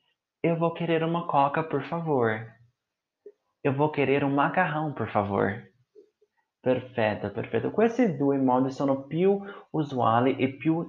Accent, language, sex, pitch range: native, Italian, male, 115-160 Hz